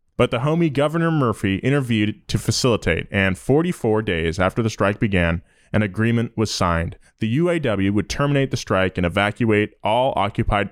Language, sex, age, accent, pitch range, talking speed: English, male, 20-39, American, 95-125 Hz, 160 wpm